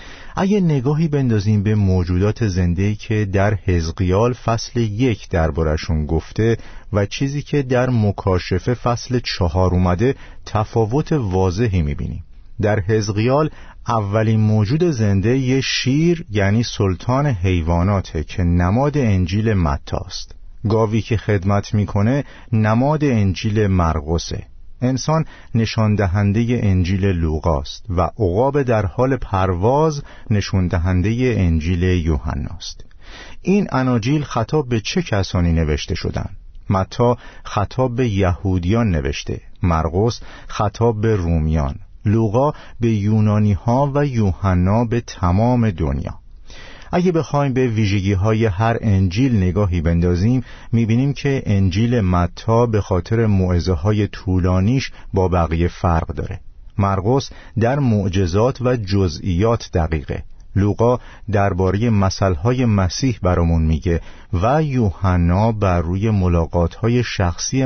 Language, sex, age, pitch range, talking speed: Persian, male, 50-69, 90-120 Hz, 110 wpm